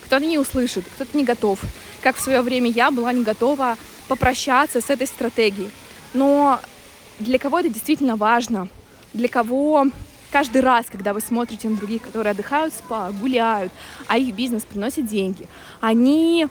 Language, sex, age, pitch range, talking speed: Russian, female, 20-39, 225-270 Hz, 160 wpm